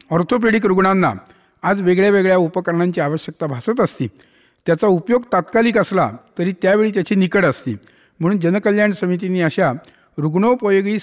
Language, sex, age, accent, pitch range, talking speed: Hindi, male, 50-69, native, 160-195 Hz, 110 wpm